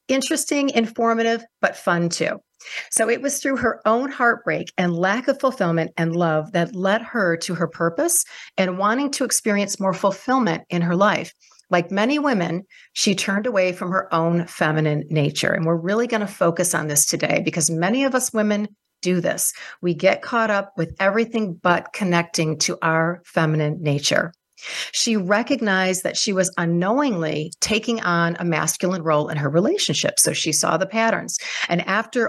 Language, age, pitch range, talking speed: English, 40-59, 170-215 Hz, 175 wpm